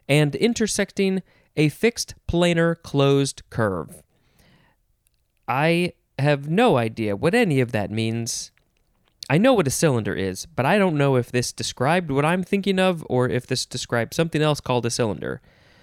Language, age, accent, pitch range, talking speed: English, 20-39, American, 125-180 Hz, 160 wpm